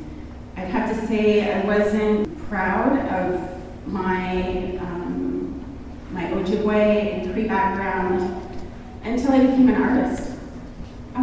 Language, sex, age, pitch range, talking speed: English, female, 30-49, 190-245 Hz, 110 wpm